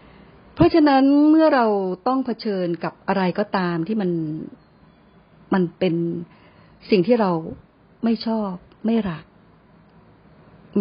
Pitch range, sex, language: 175-220 Hz, female, Thai